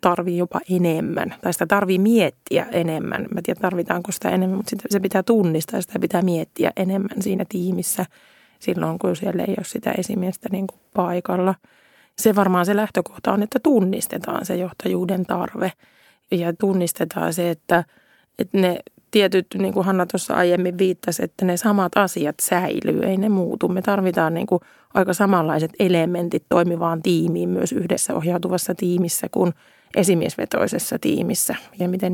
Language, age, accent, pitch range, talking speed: Finnish, 30-49, native, 175-195 Hz, 155 wpm